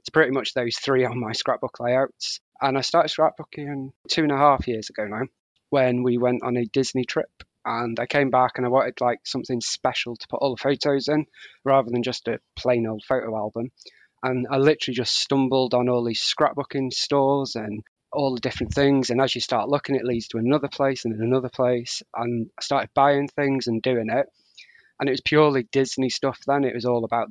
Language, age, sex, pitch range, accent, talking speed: English, 20-39, male, 120-140 Hz, British, 220 wpm